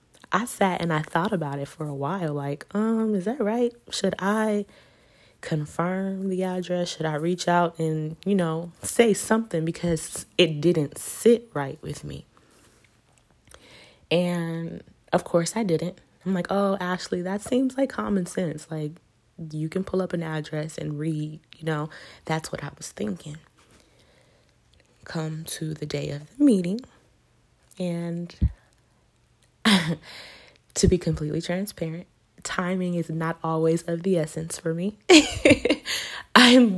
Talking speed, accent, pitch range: 145 wpm, American, 155-200 Hz